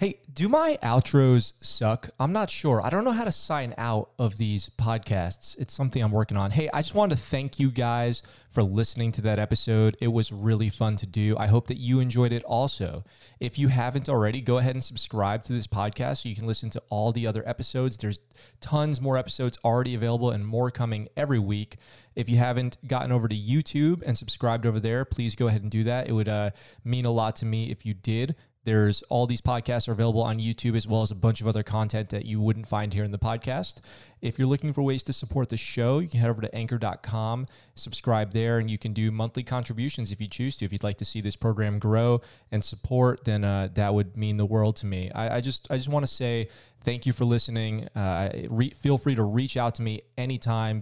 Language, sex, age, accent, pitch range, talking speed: English, male, 20-39, American, 110-125 Hz, 235 wpm